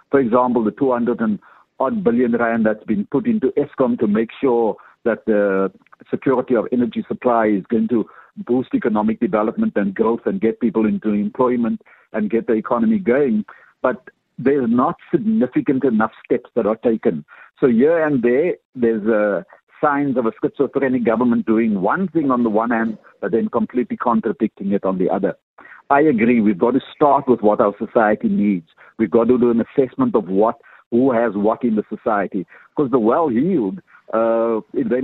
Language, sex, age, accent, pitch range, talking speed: English, male, 60-79, Indian, 105-130 Hz, 175 wpm